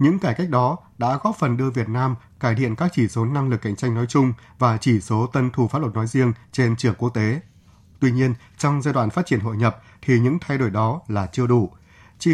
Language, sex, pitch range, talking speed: Vietnamese, male, 110-135 Hz, 255 wpm